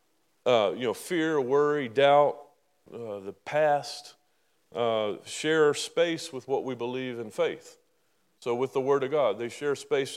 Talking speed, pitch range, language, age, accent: 160 wpm, 120-150 Hz, English, 40-59, American